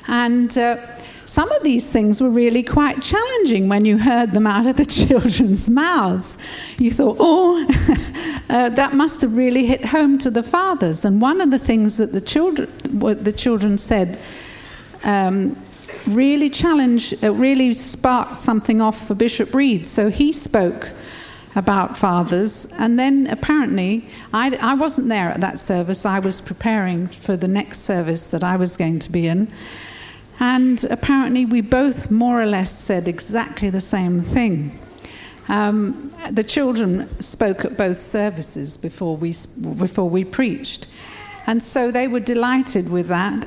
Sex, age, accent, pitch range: female, 50-69, British, 190-255 Hz